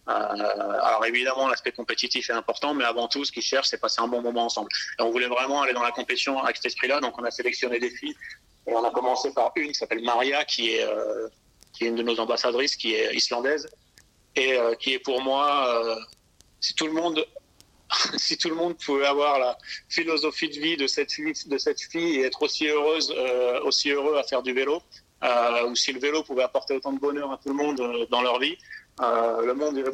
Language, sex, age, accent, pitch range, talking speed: French, male, 30-49, French, 120-160 Hz, 235 wpm